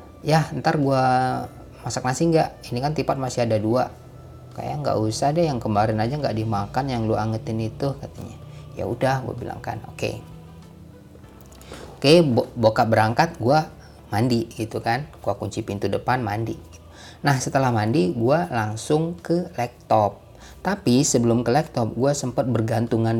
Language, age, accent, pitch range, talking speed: Indonesian, 20-39, native, 110-135 Hz, 160 wpm